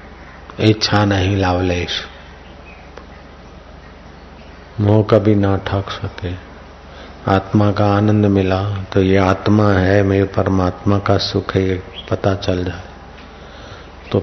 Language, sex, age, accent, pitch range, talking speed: Hindi, male, 50-69, native, 90-100 Hz, 105 wpm